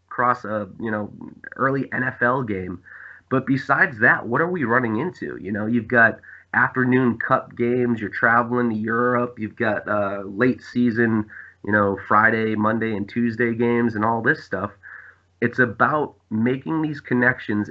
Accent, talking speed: American, 160 wpm